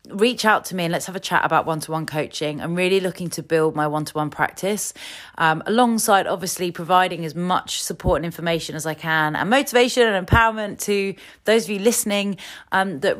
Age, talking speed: 30-49, 195 wpm